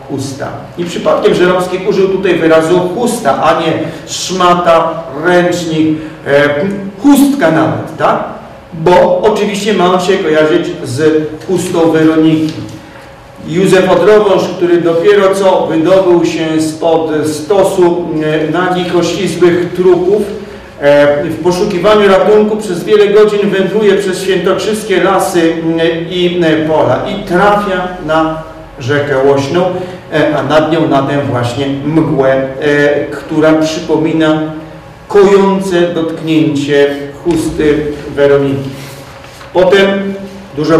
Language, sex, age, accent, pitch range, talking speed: Polish, male, 40-59, native, 155-190 Hz, 105 wpm